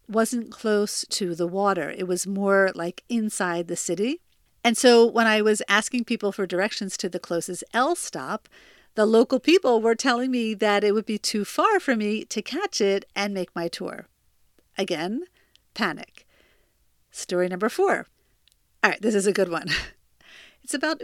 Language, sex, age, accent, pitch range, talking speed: English, female, 50-69, American, 190-240 Hz, 175 wpm